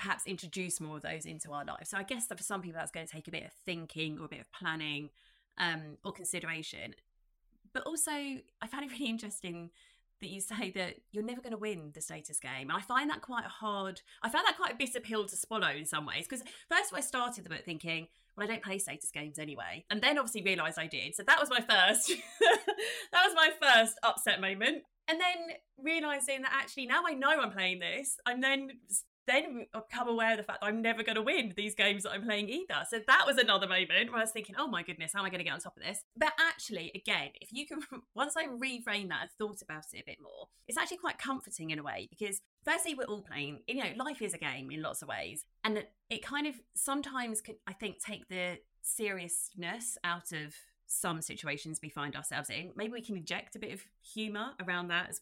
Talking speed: 245 wpm